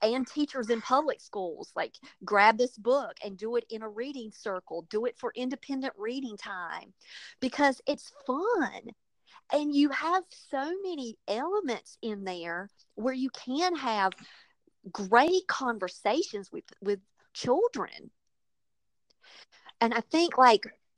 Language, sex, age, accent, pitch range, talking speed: English, female, 40-59, American, 190-255 Hz, 130 wpm